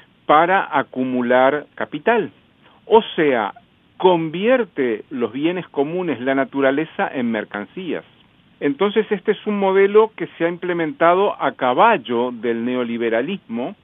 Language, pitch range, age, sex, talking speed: Spanish, 125-180 Hz, 50-69, male, 115 wpm